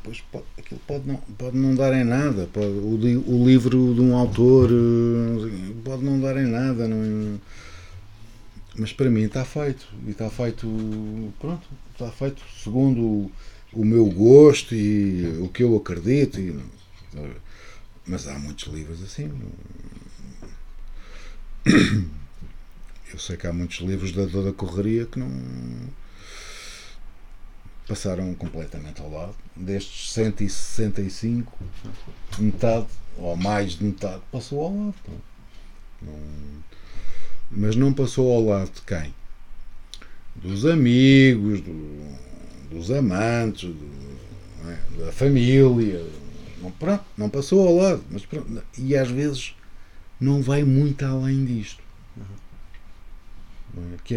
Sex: male